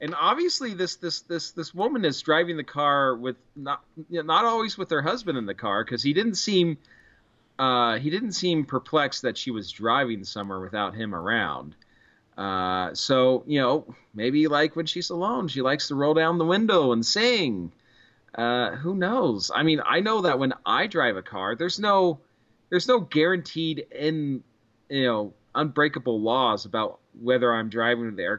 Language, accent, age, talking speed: English, American, 30-49, 185 wpm